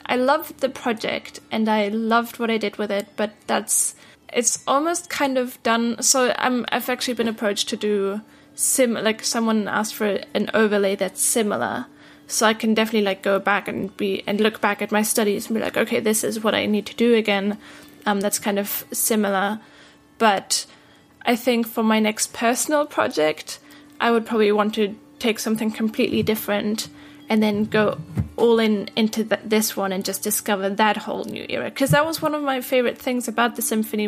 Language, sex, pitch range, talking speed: English, female, 210-245 Hz, 195 wpm